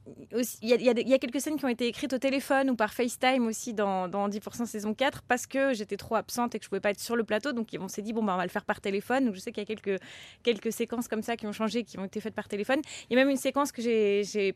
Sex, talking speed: female, 320 wpm